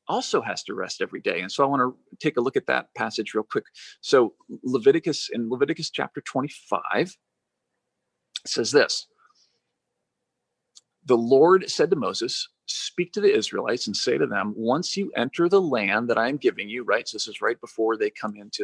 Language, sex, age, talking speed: English, male, 40-59, 190 wpm